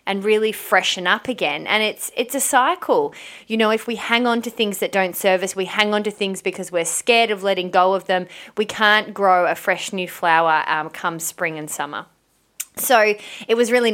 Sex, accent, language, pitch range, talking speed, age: female, Australian, English, 170-200 Hz, 220 wpm, 20-39